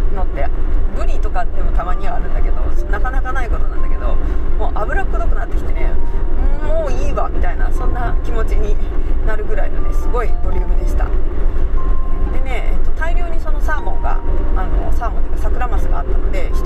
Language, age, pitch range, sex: Japanese, 40-59, 65-75 Hz, female